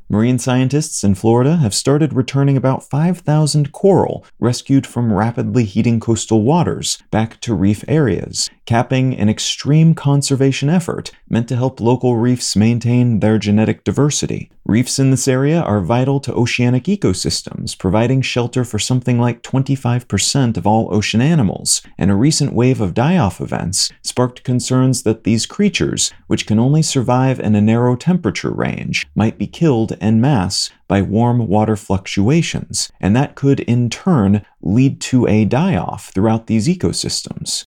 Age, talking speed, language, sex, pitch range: 30-49, 150 wpm, English, male, 110-135 Hz